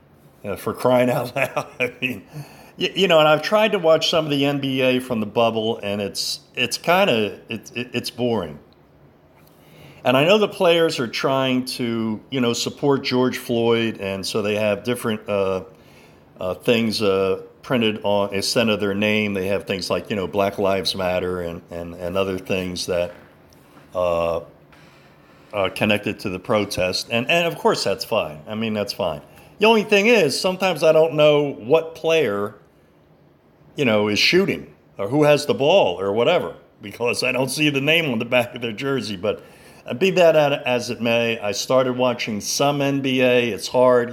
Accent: American